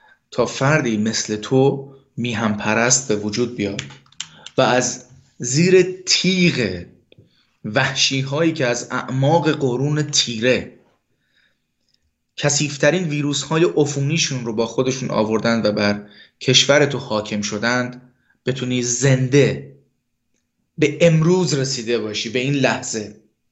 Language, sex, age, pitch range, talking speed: Persian, male, 30-49, 110-150 Hz, 110 wpm